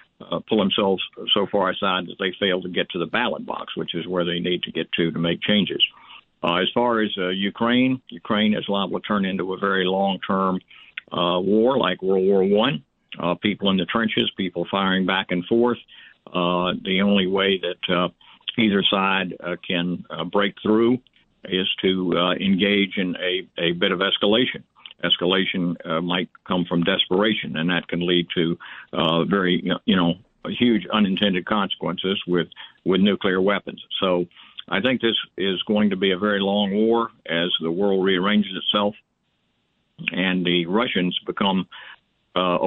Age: 50-69